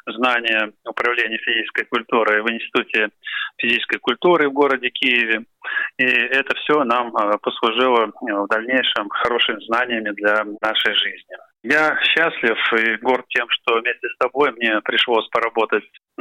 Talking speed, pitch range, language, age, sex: 130 wpm, 105-130 Hz, Russian, 20-39, male